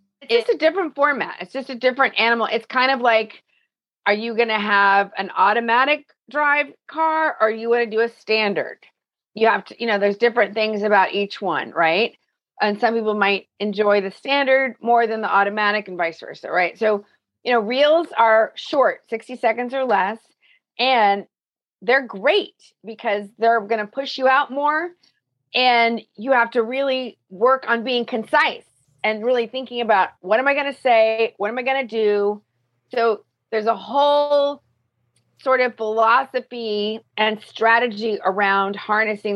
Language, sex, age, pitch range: English, female, 40-59, 200-255 Hz